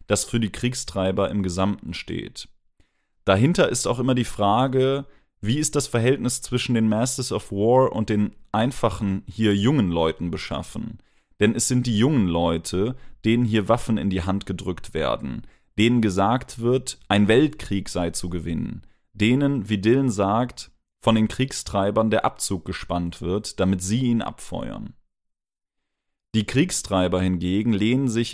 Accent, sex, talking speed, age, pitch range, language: German, male, 150 wpm, 30-49, 95-120 Hz, German